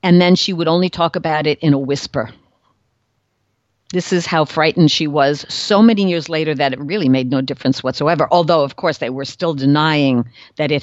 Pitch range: 135-180 Hz